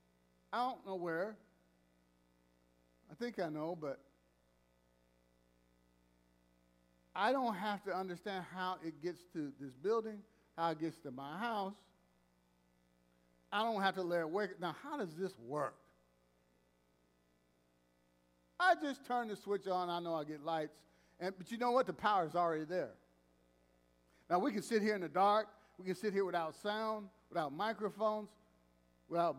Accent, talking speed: American, 155 wpm